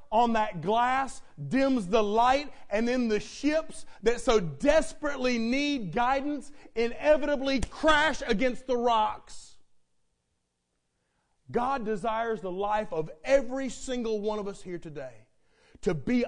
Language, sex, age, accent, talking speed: English, male, 40-59, American, 125 wpm